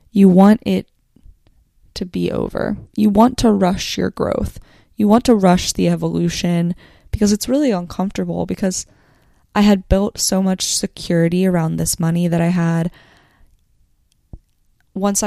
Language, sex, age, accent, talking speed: English, female, 20-39, American, 140 wpm